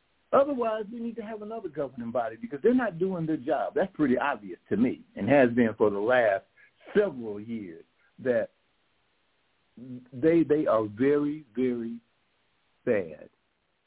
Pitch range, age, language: 110-150 Hz, 60-79, English